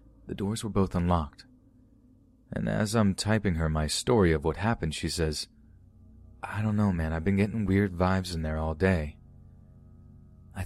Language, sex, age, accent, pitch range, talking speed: English, male, 30-49, American, 80-105 Hz, 175 wpm